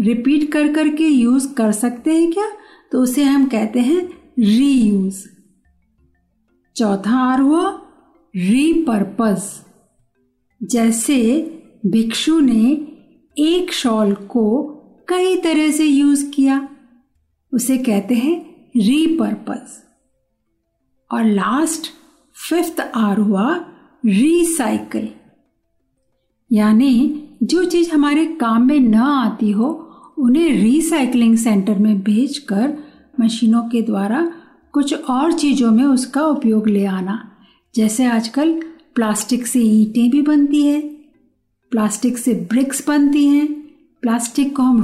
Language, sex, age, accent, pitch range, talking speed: Hindi, female, 50-69, native, 220-300 Hz, 105 wpm